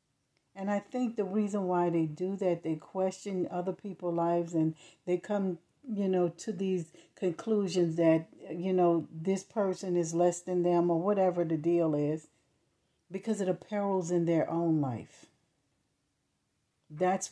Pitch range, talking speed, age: 160-195 Hz, 155 wpm, 60-79